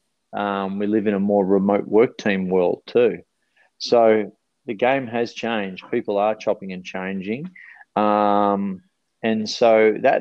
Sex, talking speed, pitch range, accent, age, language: male, 145 wpm, 100-110 Hz, Australian, 30-49, English